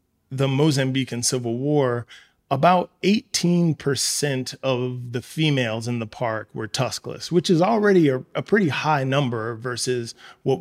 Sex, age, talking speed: male, 30-49, 135 wpm